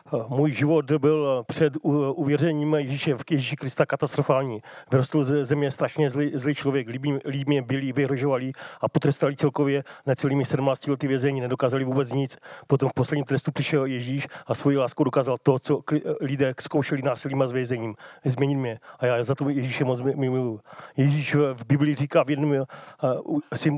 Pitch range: 135-155 Hz